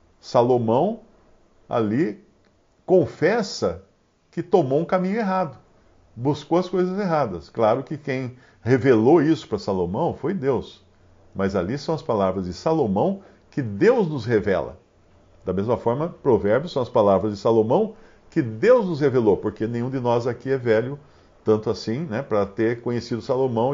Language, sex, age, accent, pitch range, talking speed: Portuguese, male, 50-69, Brazilian, 110-170 Hz, 150 wpm